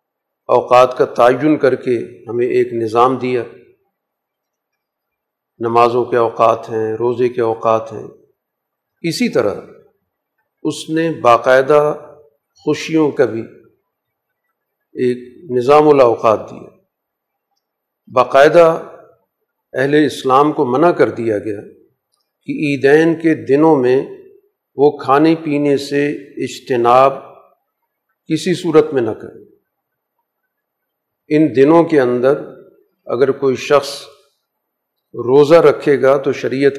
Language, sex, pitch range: Urdu, male, 125-165 Hz